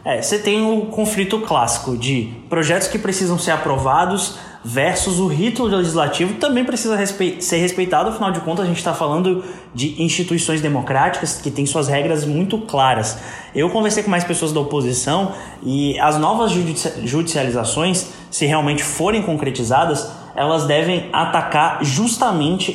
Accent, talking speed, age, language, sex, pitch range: Brazilian, 150 wpm, 20-39, Portuguese, male, 150-205 Hz